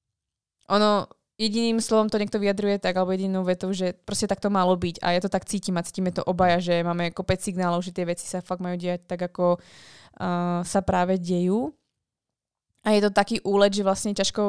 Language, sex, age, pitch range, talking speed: Slovak, female, 20-39, 175-195 Hz, 205 wpm